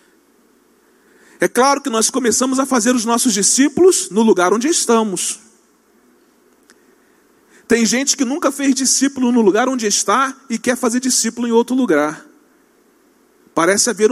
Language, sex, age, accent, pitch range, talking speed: Portuguese, male, 40-59, Brazilian, 235-315 Hz, 140 wpm